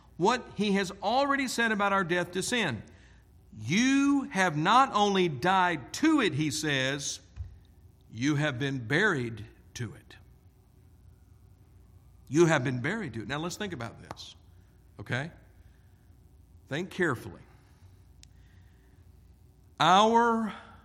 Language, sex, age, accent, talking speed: English, male, 50-69, American, 115 wpm